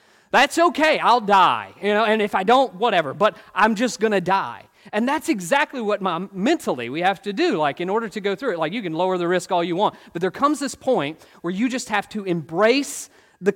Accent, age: American, 40-59